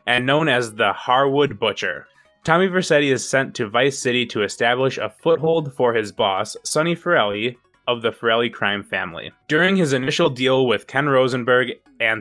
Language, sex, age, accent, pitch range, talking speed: English, male, 20-39, American, 120-150 Hz, 170 wpm